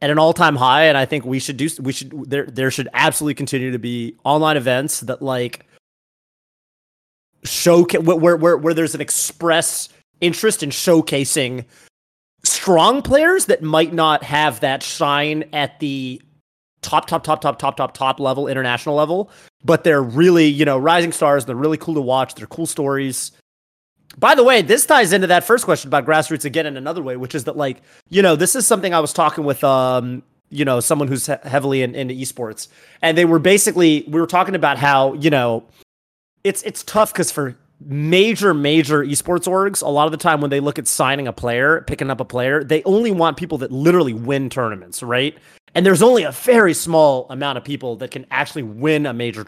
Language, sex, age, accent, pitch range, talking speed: English, male, 30-49, American, 135-165 Hz, 205 wpm